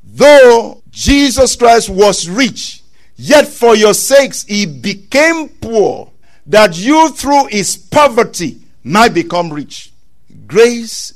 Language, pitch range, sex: English, 180-255 Hz, male